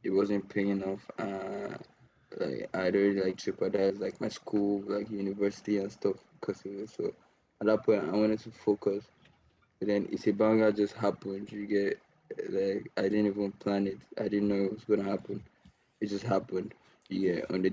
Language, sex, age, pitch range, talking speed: English, male, 20-39, 95-105 Hz, 170 wpm